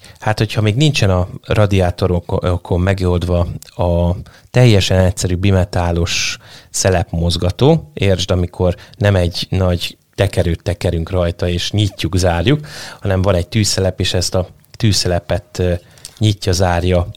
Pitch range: 90-110 Hz